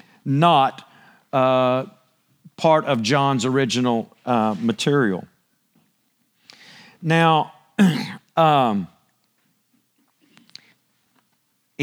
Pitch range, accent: 120-155 Hz, American